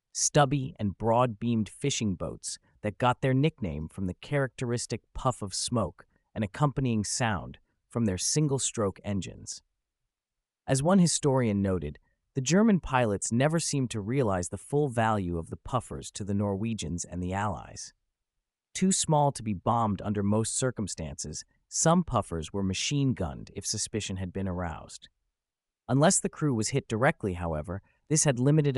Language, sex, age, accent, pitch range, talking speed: English, male, 30-49, American, 95-135 Hz, 150 wpm